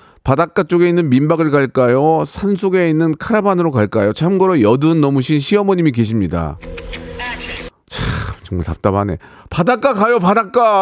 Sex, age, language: male, 40-59, Korean